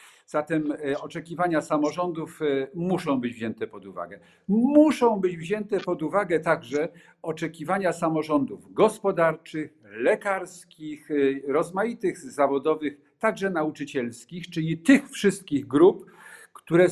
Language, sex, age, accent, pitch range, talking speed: Polish, male, 50-69, native, 140-185 Hz, 95 wpm